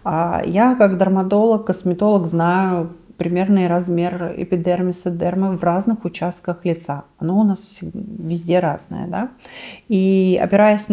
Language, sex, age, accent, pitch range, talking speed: Russian, female, 30-49, native, 175-215 Hz, 115 wpm